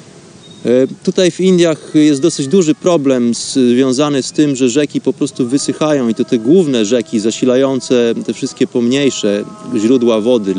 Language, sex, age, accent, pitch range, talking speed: Polish, male, 30-49, native, 125-150 Hz, 145 wpm